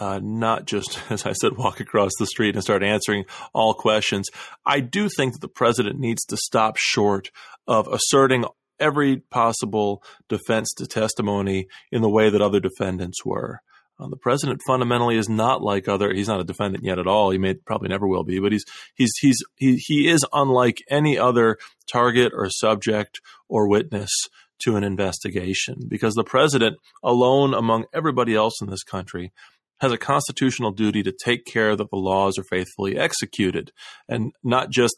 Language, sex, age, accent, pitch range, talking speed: English, male, 30-49, American, 100-125 Hz, 180 wpm